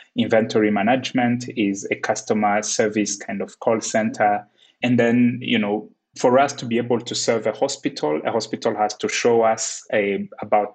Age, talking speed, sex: 20-39, 175 wpm, male